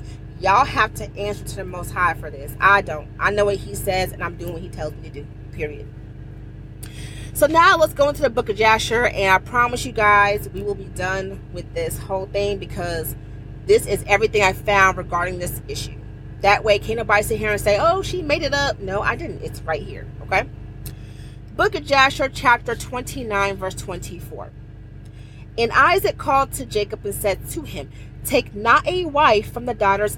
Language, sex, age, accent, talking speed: English, female, 30-49, American, 200 wpm